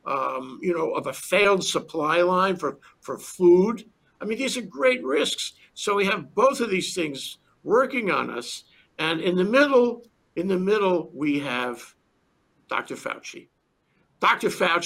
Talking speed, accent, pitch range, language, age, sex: 160 wpm, American, 150-200 Hz, English, 60-79, male